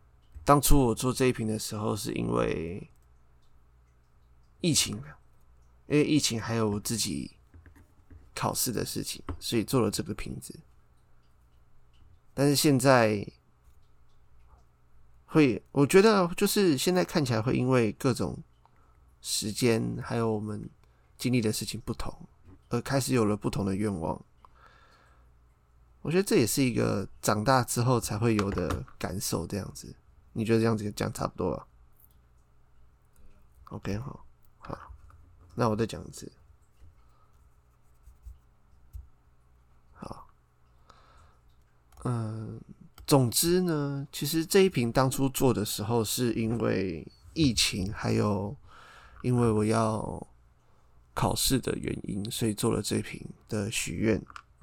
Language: Chinese